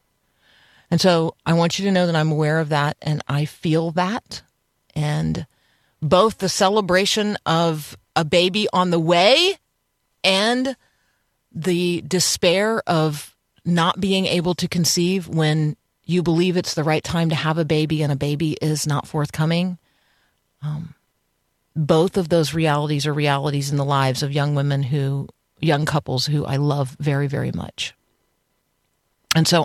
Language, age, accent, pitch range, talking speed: English, 40-59, American, 150-170 Hz, 155 wpm